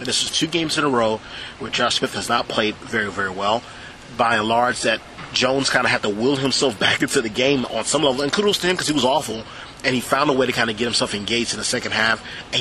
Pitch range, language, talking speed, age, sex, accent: 110-135 Hz, English, 275 wpm, 30-49, male, American